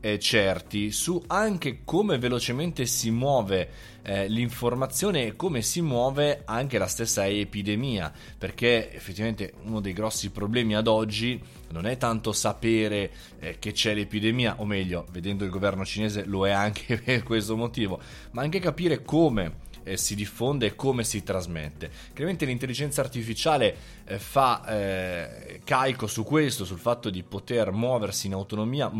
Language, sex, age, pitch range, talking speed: Italian, male, 20-39, 100-120 Hz, 150 wpm